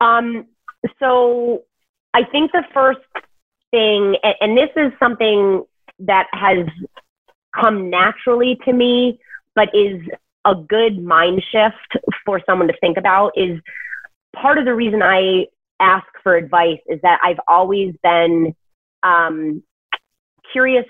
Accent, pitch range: American, 175-225 Hz